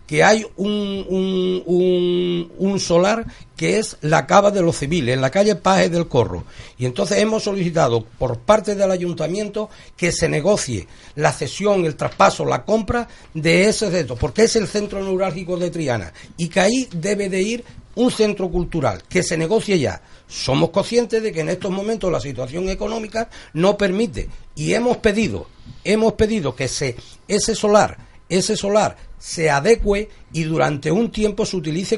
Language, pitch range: Spanish, 155-215 Hz